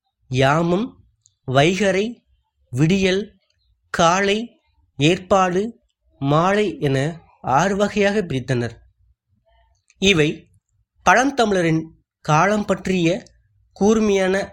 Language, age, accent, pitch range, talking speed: Tamil, 20-39, native, 135-190 Hz, 60 wpm